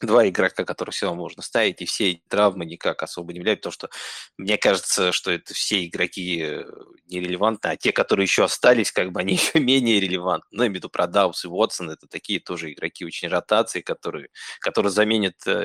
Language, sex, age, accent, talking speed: Russian, male, 20-39, native, 200 wpm